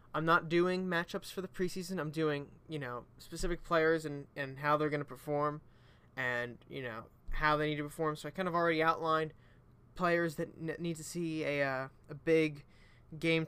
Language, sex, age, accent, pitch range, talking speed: English, male, 20-39, American, 140-165 Hz, 190 wpm